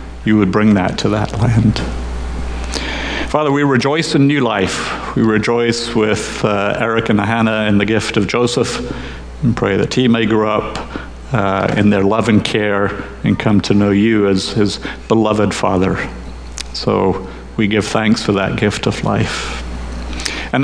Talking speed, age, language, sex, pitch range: 165 wpm, 50-69, English, male, 95-120 Hz